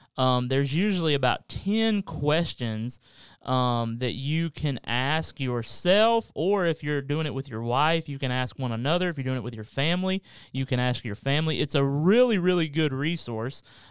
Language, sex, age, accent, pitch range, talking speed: English, male, 30-49, American, 125-160 Hz, 185 wpm